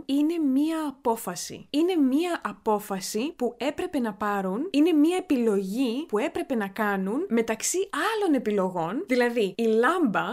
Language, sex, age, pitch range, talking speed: Greek, female, 20-39, 210-275 Hz, 135 wpm